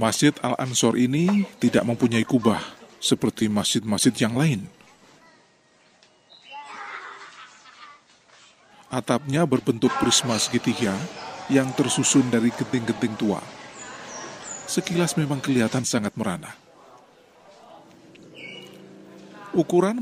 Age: 40-59